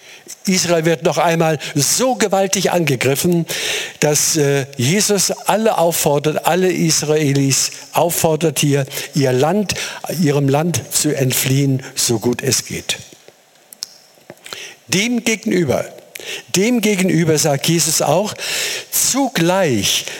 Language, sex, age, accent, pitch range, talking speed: German, male, 60-79, German, 145-190 Hz, 90 wpm